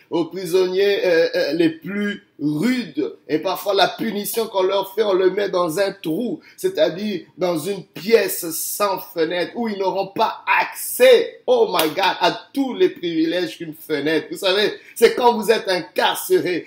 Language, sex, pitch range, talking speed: French, male, 185-305 Hz, 170 wpm